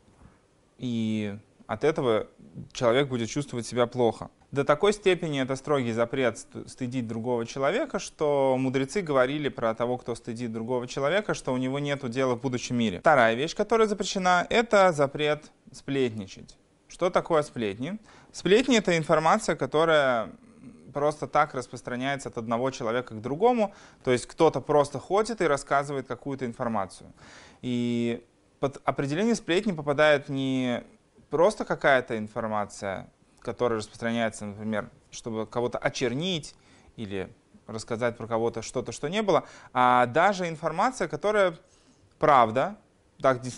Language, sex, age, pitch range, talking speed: Russian, male, 20-39, 120-155 Hz, 130 wpm